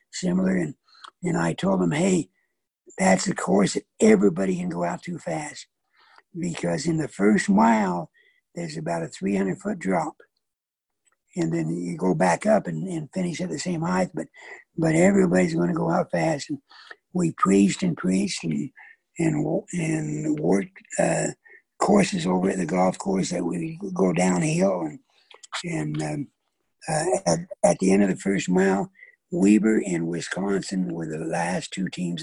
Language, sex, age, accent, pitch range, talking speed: English, male, 60-79, American, 145-185 Hz, 165 wpm